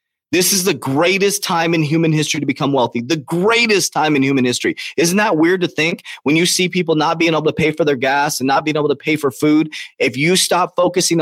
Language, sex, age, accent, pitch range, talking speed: English, male, 30-49, American, 140-185 Hz, 245 wpm